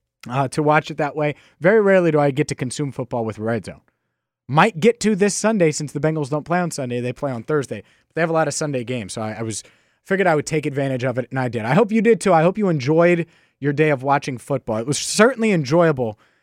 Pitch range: 125-170 Hz